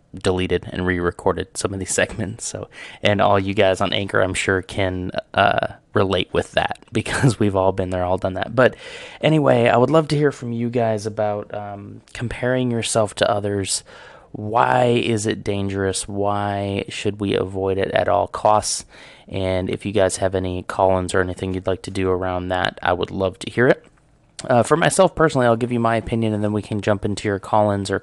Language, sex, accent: English, male, American